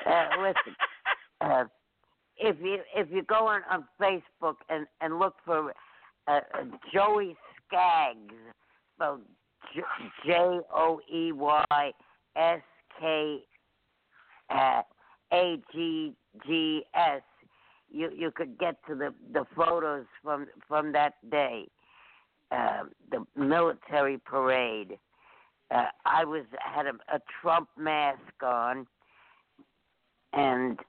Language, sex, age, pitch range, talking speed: English, female, 60-79, 135-170 Hz, 90 wpm